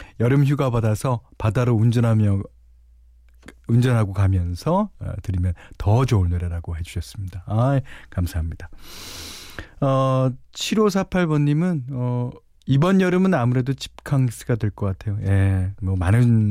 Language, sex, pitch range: Korean, male, 95-145 Hz